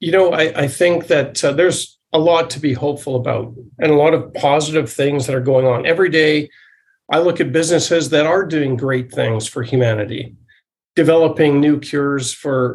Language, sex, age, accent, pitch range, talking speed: English, male, 50-69, American, 125-160 Hz, 195 wpm